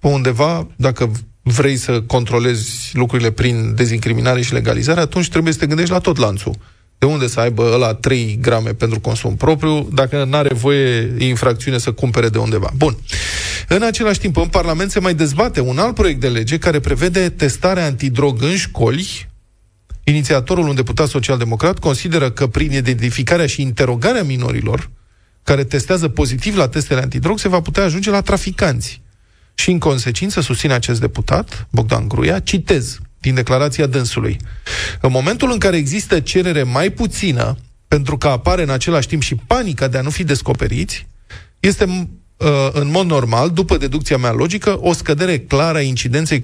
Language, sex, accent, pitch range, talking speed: Romanian, male, native, 120-155 Hz, 160 wpm